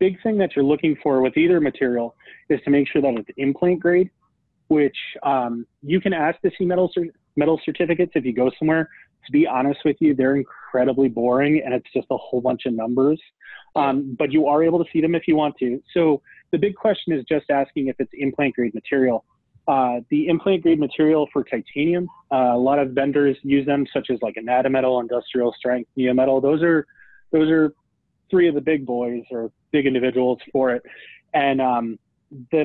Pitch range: 130-170 Hz